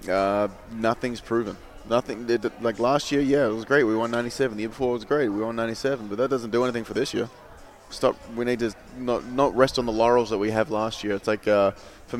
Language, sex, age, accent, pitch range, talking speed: English, male, 20-39, Australian, 100-115 Hz, 250 wpm